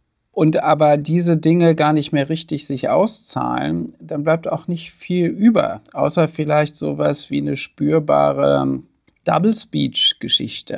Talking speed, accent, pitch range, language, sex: 130 wpm, German, 140-165 Hz, German, male